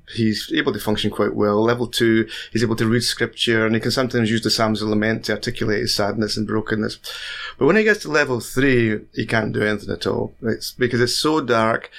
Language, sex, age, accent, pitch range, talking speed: English, male, 30-49, British, 110-125 Hz, 235 wpm